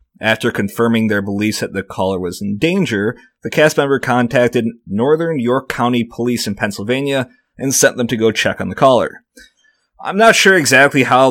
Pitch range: 110-135 Hz